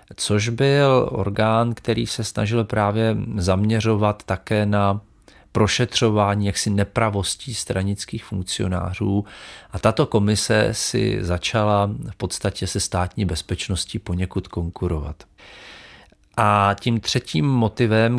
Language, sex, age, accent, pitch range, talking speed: Czech, male, 40-59, native, 95-115 Hz, 100 wpm